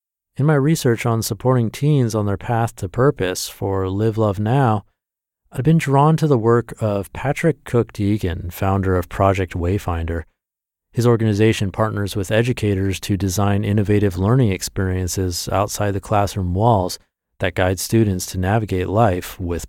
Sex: male